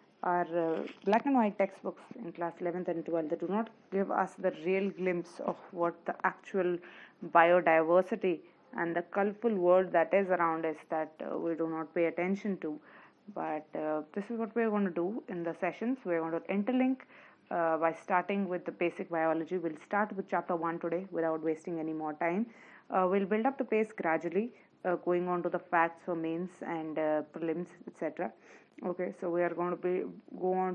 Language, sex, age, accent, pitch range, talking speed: English, female, 30-49, Indian, 165-190 Hz, 200 wpm